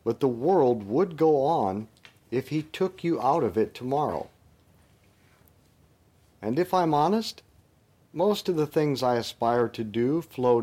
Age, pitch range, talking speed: 50-69, 105-140 Hz, 150 wpm